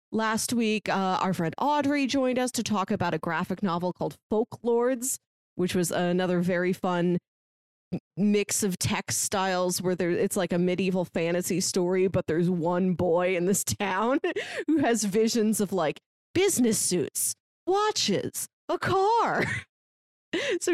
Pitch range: 180-245 Hz